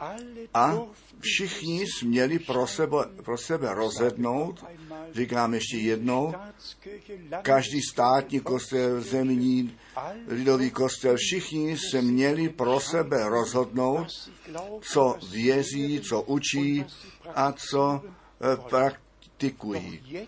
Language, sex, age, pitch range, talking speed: Czech, male, 50-69, 115-160 Hz, 90 wpm